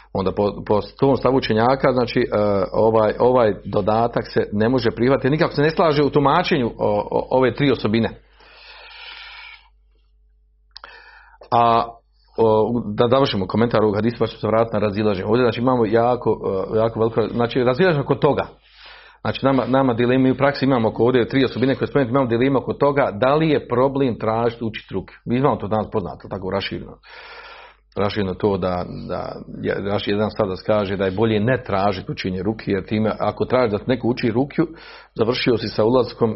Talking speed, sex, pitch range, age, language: 175 wpm, male, 105-135 Hz, 40-59, Croatian